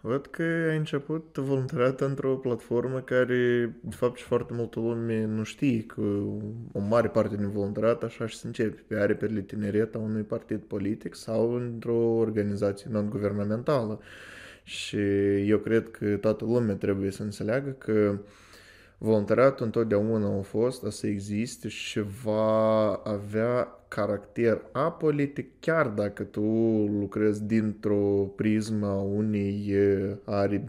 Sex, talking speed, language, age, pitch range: male, 130 wpm, Romanian, 20-39, 100-115 Hz